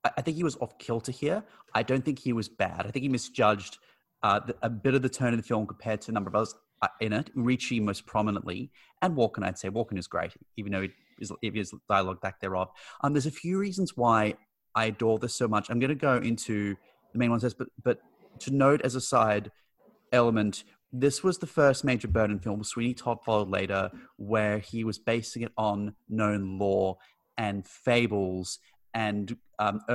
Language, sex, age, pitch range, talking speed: English, male, 30-49, 105-125 Hz, 200 wpm